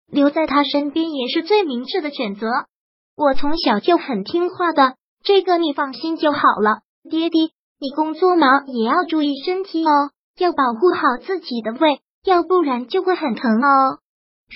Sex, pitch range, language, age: male, 265-330 Hz, Chinese, 20-39